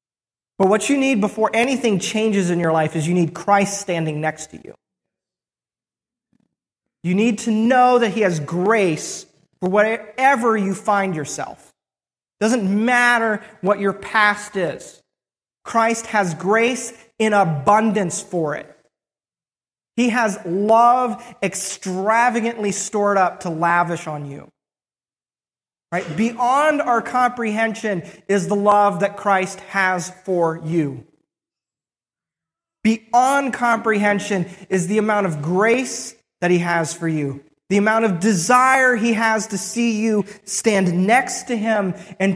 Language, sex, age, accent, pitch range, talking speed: English, male, 30-49, American, 180-230 Hz, 130 wpm